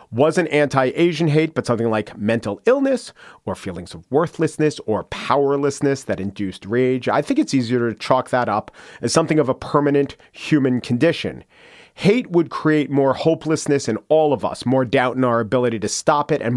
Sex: male